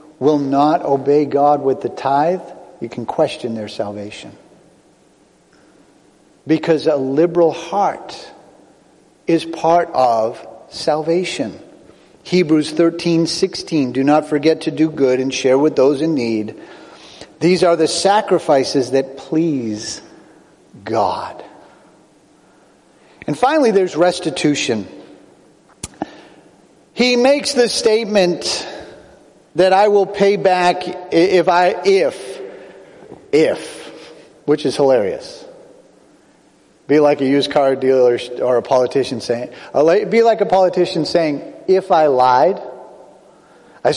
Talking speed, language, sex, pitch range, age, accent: 110 wpm, English, male, 140-180 Hz, 50-69, American